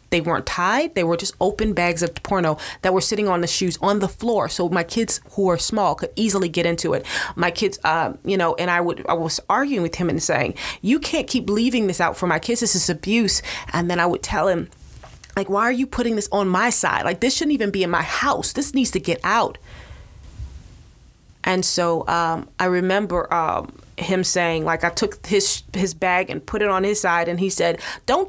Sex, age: female, 20-39